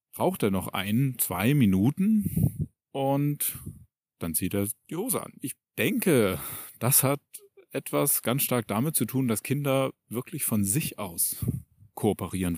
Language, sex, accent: German, male, German